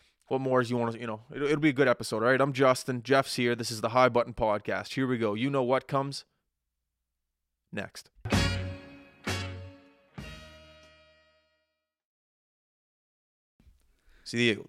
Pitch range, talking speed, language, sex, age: 105-125 Hz, 145 wpm, English, male, 20-39